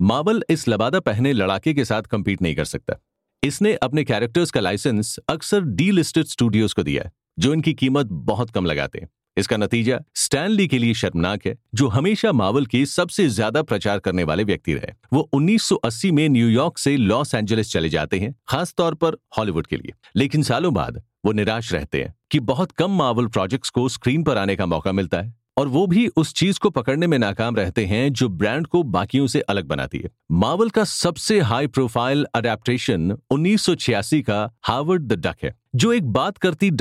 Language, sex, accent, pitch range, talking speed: Hindi, male, native, 105-160 Hz, 180 wpm